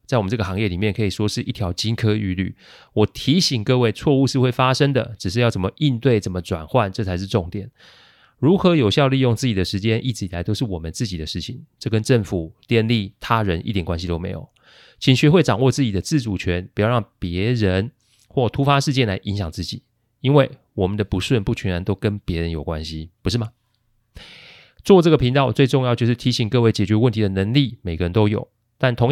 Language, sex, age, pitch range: Chinese, male, 30-49, 95-130 Hz